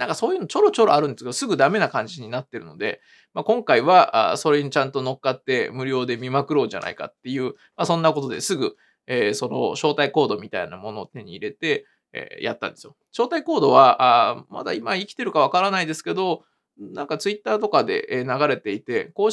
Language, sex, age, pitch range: Japanese, male, 20-39, 155-230 Hz